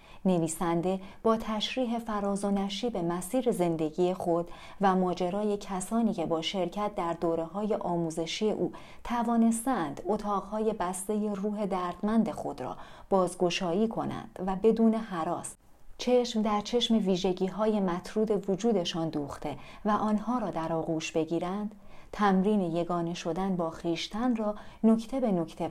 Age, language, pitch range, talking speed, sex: 40-59, Persian, 175-215 Hz, 130 wpm, female